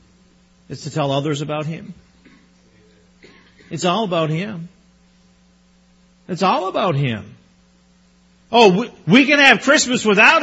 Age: 50-69